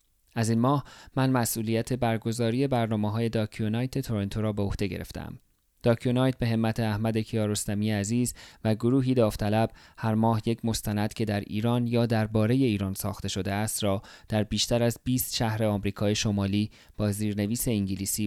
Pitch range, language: 105-115 Hz, Persian